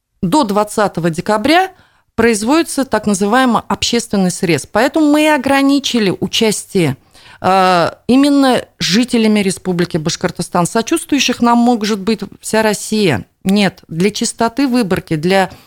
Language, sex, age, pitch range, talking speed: Russian, female, 30-49, 180-245 Hz, 105 wpm